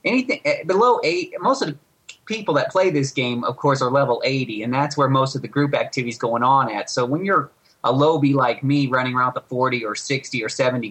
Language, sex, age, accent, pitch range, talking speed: English, male, 30-49, American, 120-140 Hz, 235 wpm